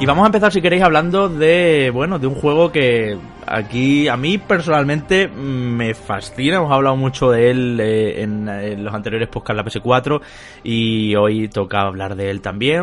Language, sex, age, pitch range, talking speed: Spanish, male, 20-39, 110-140 Hz, 185 wpm